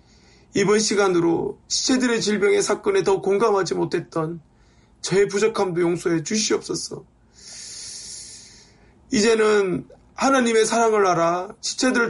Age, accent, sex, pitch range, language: 20-39, native, male, 165-215 Hz, Korean